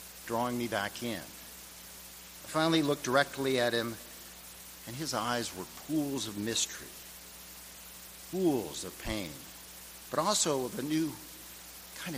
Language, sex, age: English, male, 50-69